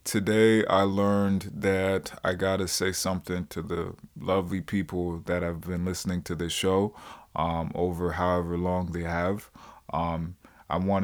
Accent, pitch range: American, 85-95 Hz